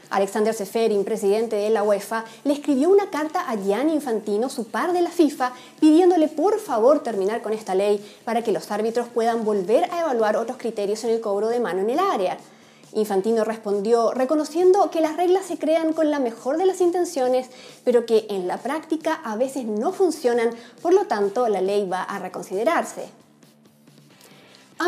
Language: English